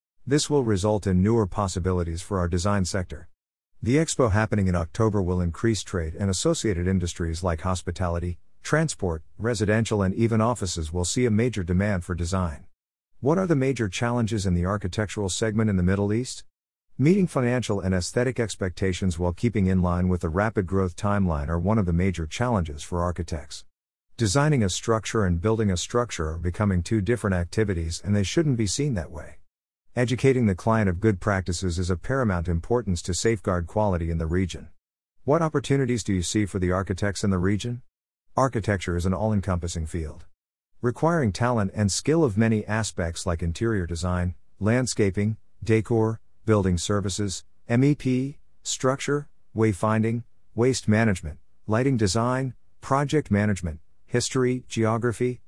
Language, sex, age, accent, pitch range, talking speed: English, male, 50-69, American, 90-115 Hz, 160 wpm